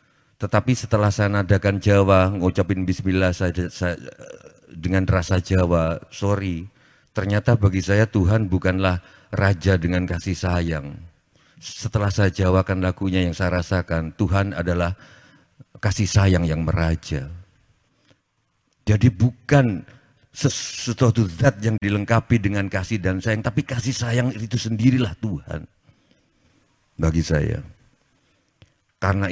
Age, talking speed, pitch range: 50-69, 110 wpm, 90-120 Hz